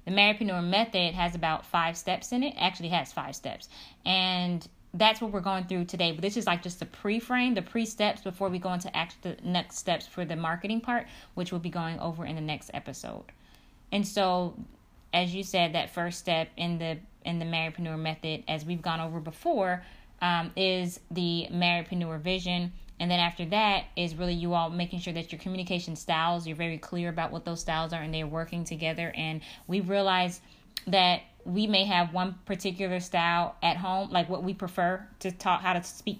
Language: English